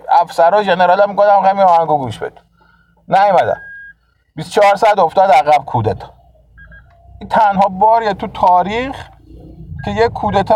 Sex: male